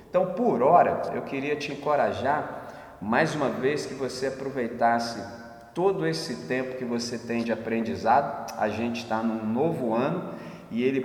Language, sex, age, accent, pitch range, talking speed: Portuguese, male, 40-59, Brazilian, 115-135 Hz, 160 wpm